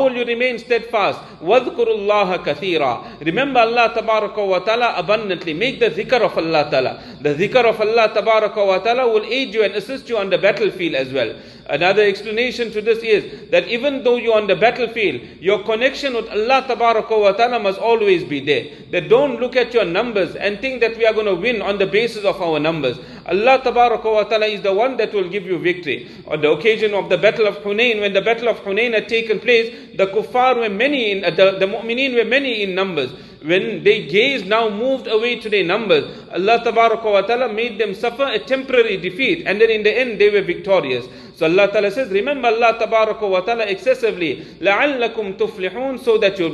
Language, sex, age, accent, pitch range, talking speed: English, male, 40-59, Indian, 210-260 Hz, 190 wpm